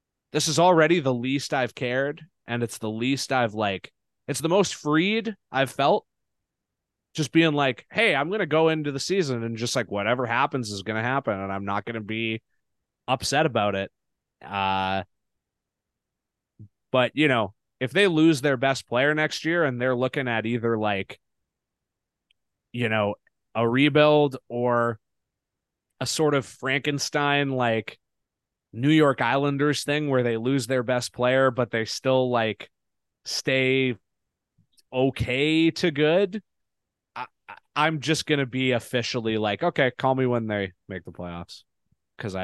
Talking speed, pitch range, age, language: 155 wpm, 105-145 Hz, 20-39, English